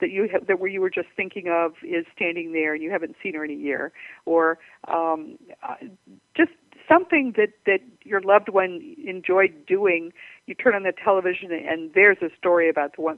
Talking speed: 205 wpm